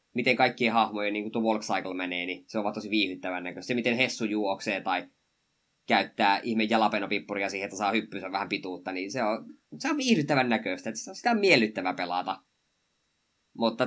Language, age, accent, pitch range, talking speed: Finnish, 20-39, native, 100-130 Hz, 180 wpm